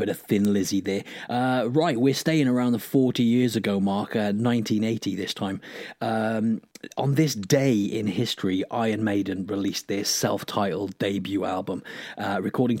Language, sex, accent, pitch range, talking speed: English, male, British, 105-125 Hz, 160 wpm